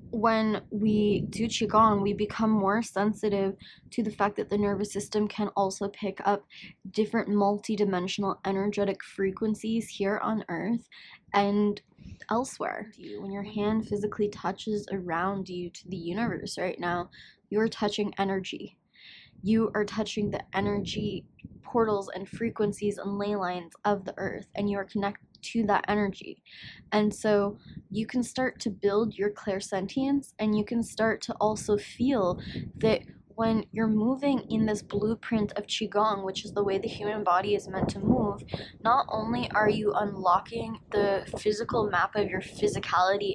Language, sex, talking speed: English, female, 155 wpm